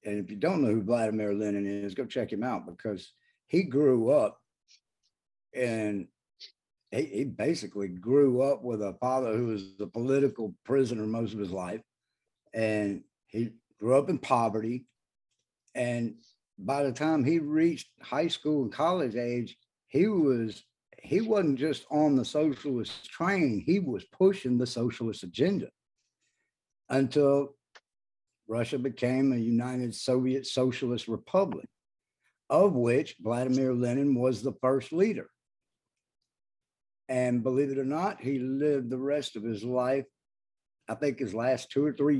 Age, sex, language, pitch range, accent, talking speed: 60-79, male, English, 115-140 Hz, American, 145 wpm